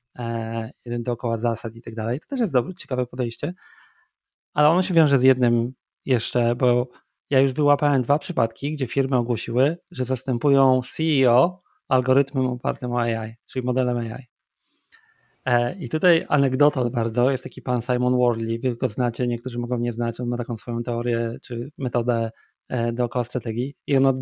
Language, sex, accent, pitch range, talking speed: Polish, male, native, 120-140 Hz, 165 wpm